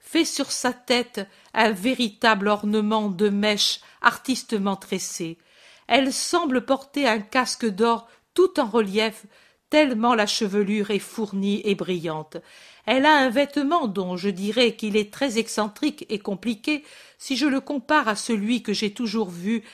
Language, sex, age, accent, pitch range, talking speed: French, female, 50-69, French, 205-265 Hz, 150 wpm